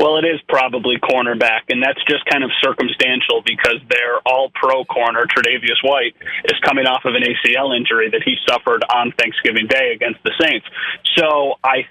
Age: 30-49